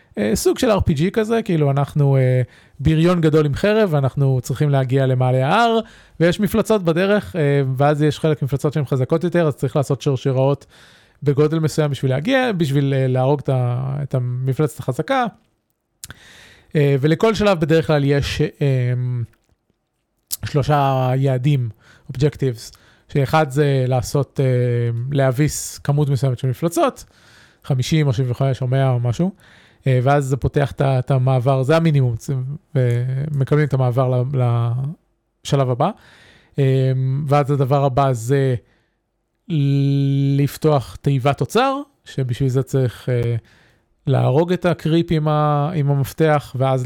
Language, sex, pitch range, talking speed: Hebrew, male, 130-155 Hz, 130 wpm